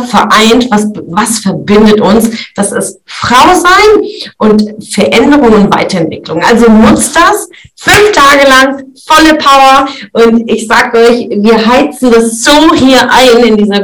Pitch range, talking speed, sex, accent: 200-245 Hz, 145 wpm, female, German